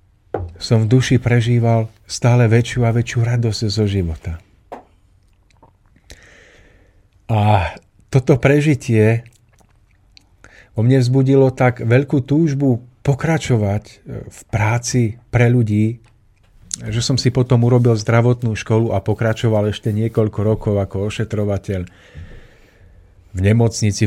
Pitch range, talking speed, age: 95-120 Hz, 100 wpm, 50-69